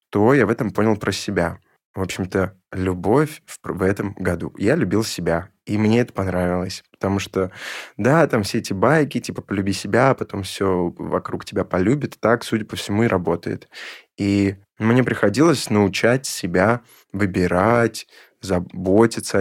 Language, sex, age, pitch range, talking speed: Russian, male, 20-39, 95-110 Hz, 155 wpm